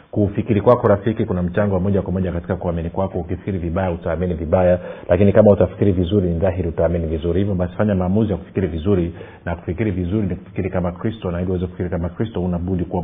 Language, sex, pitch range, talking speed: Swahili, male, 90-100 Hz, 200 wpm